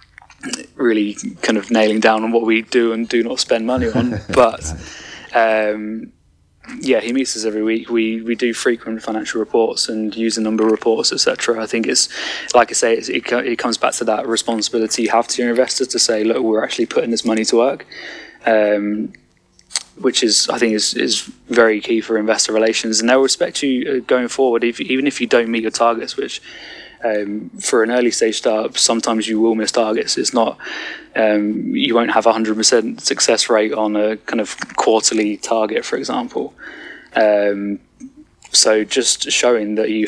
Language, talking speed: English, 190 wpm